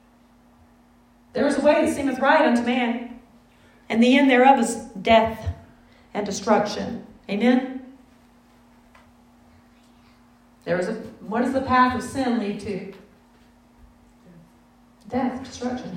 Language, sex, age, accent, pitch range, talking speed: English, female, 40-59, American, 245-315 Hz, 115 wpm